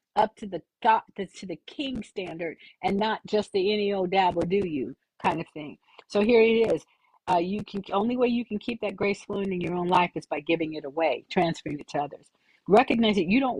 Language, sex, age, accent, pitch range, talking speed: English, female, 50-69, American, 170-215 Hz, 230 wpm